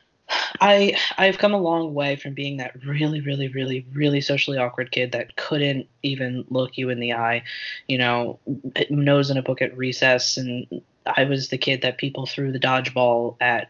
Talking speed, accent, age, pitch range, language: 195 wpm, American, 20-39, 125-155 Hz, English